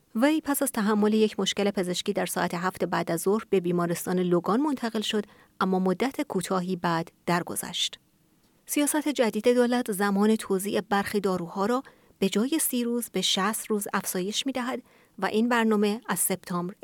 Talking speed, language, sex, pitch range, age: 165 wpm, Persian, female, 185-240 Hz, 30-49